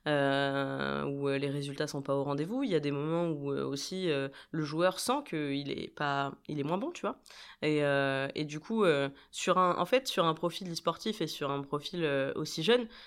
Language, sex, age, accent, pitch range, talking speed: French, female, 20-39, French, 145-180 Hz, 230 wpm